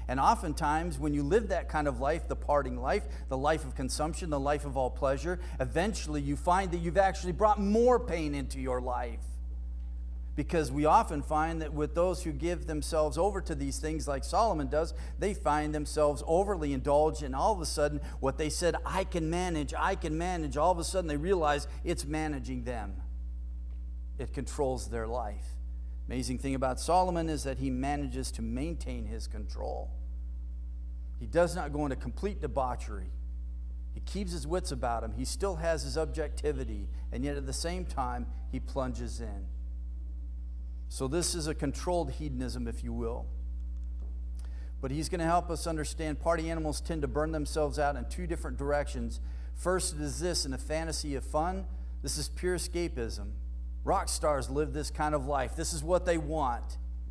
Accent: American